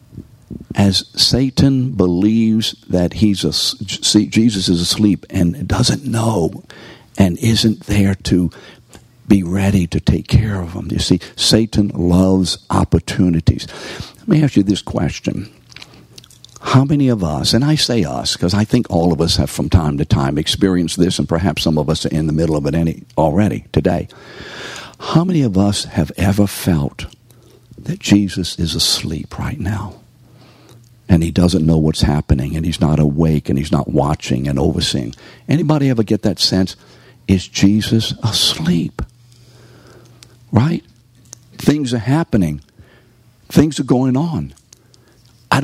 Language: English